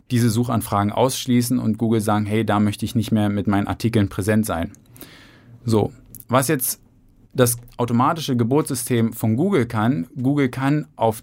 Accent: German